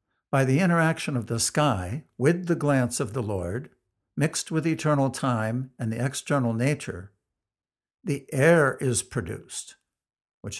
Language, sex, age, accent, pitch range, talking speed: English, male, 60-79, American, 115-150 Hz, 140 wpm